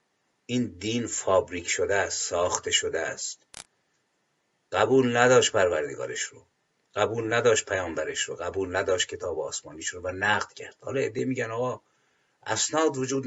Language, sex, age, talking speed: Persian, male, 50-69, 135 wpm